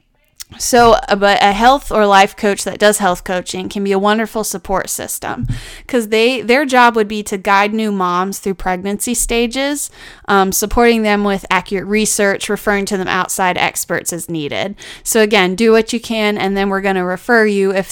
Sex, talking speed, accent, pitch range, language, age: female, 195 wpm, American, 185-215 Hz, English, 20-39